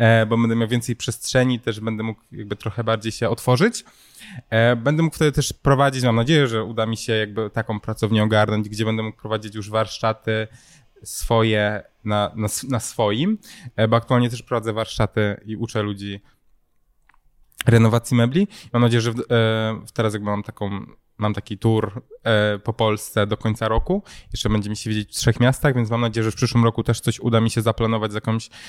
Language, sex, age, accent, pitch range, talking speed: Polish, male, 20-39, native, 110-120 Hz, 185 wpm